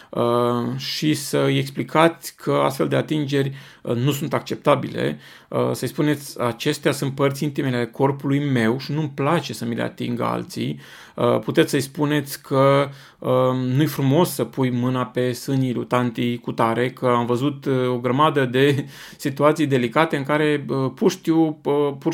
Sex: male